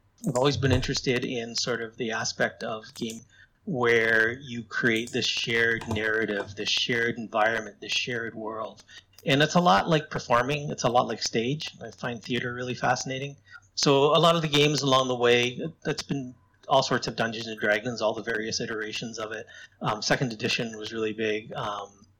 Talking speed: 185 wpm